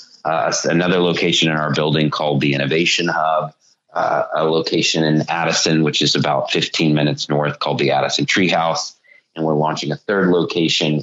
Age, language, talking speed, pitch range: 30-49, English, 170 wpm, 75-85 Hz